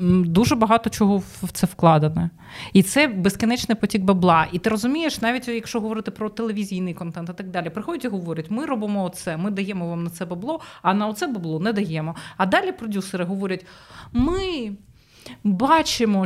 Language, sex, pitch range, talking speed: Ukrainian, female, 180-225 Hz, 175 wpm